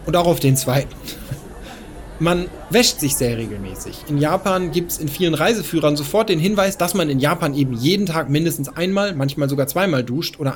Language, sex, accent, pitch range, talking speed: English, male, German, 135-175 Hz, 195 wpm